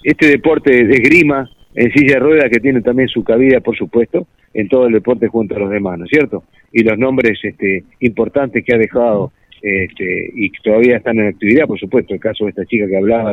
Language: Spanish